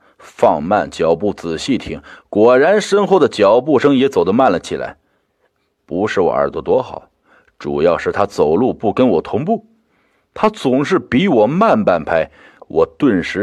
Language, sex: Chinese, male